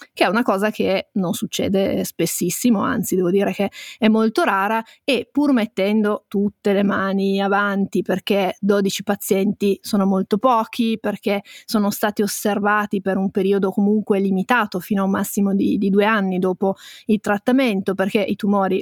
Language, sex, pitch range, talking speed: Italian, female, 200-225 Hz, 165 wpm